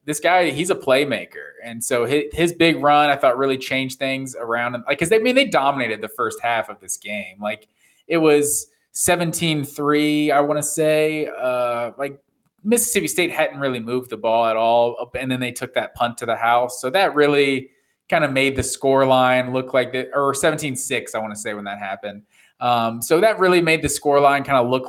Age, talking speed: 20-39, 210 wpm